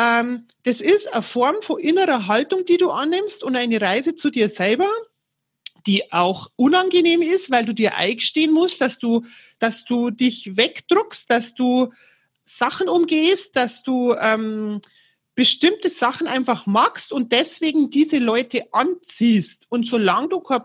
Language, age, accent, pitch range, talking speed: German, 40-59, German, 230-320 Hz, 150 wpm